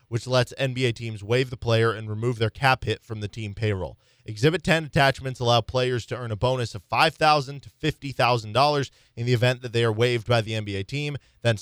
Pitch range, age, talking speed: 115-135 Hz, 20-39, 210 wpm